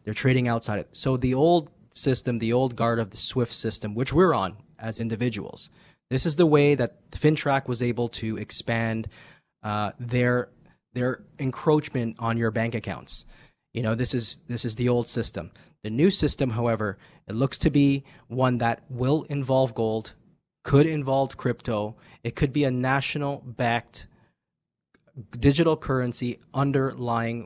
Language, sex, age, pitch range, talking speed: English, male, 20-39, 115-140 Hz, 155 wpm